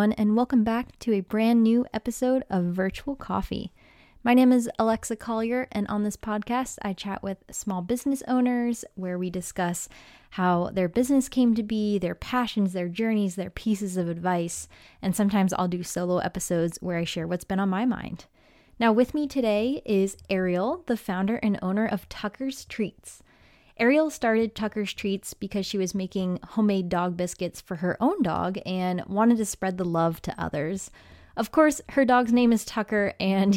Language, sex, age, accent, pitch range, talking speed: English, female, 20-39, American, 185-230 Hz, 180 wpm